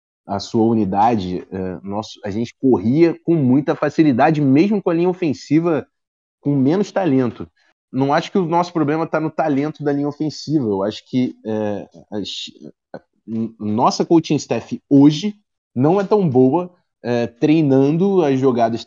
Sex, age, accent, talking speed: male, 20-39, Brazilian, 145 wpm